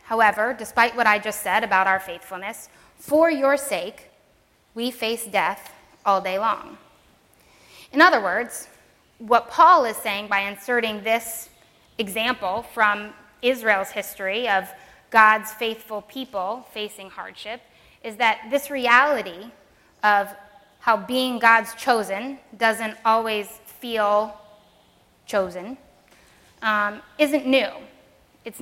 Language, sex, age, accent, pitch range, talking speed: English, female, 20-39, American, 210-260 Hz, 115 wpm